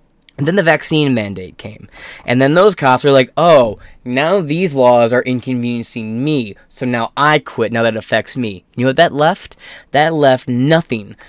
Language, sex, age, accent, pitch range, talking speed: English, male, 20-39, American, 115-165 Hz, 185 wpm